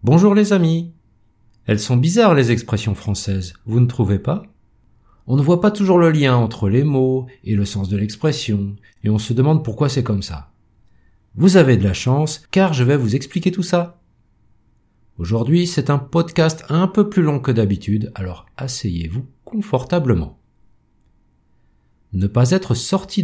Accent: French